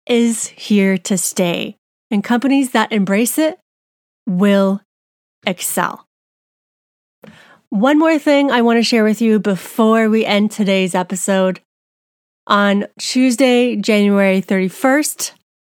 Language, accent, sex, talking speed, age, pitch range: English, American, female, 110 wpm, 30-49, 195-250 Hz